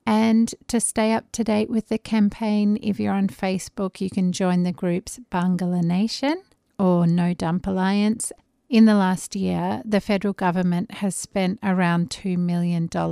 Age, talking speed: 40-59, 165 wpm